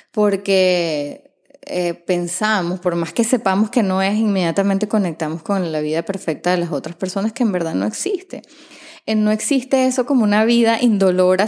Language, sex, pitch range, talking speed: Spanish, female, 170-215 Hz, 170 wpm